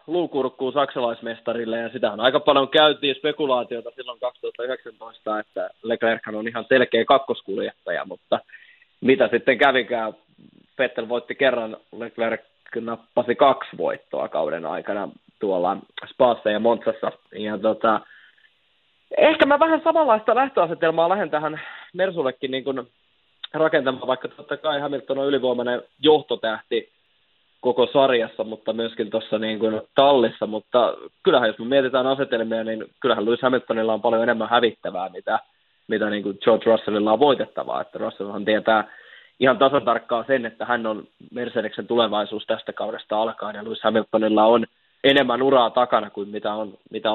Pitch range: 110-140 Hz